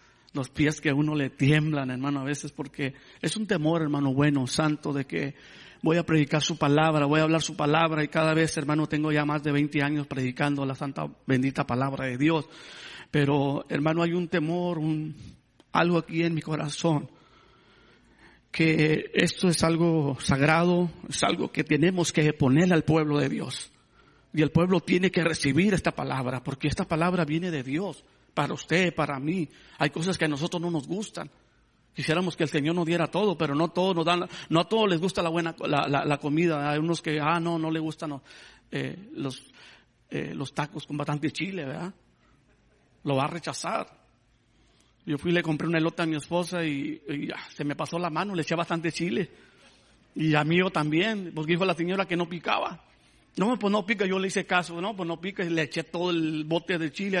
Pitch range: 150-170 Hz